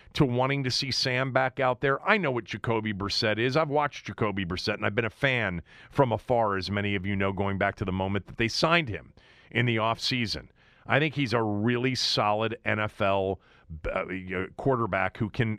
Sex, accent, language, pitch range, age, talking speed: male, American, English, 105-135 Hz, 40-59, 205 wpm